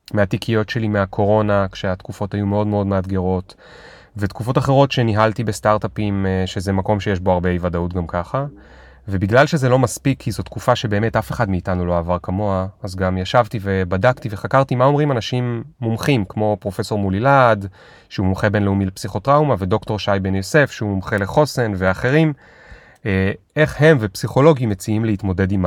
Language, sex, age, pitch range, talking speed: Hebrew, male, 30-49, 95-120 Hz, 155 wpm